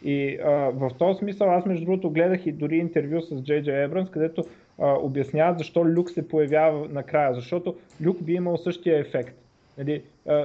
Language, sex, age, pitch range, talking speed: Bulgarian, male, 30-49, 150-185 Hz, 185 wpm